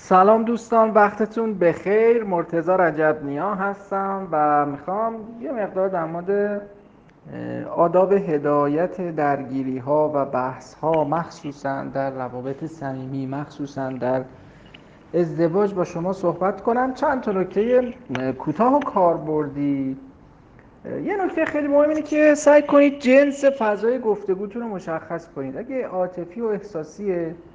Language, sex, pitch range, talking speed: Persian, male, 155-215 Hz, 120 wpm